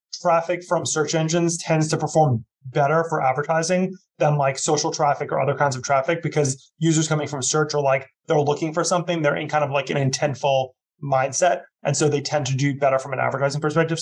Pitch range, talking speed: 140-160 Hz, 210 wpm